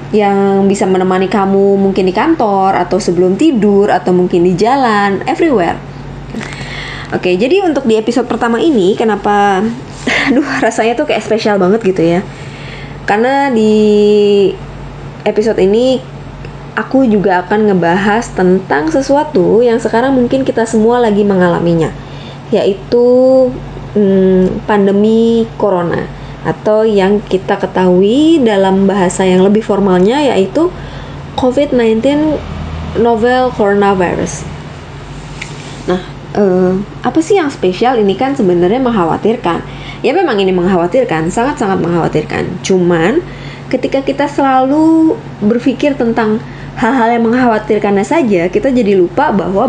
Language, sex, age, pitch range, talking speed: Indonesian, female, 20-39, 180-240 Hz, 115 wpm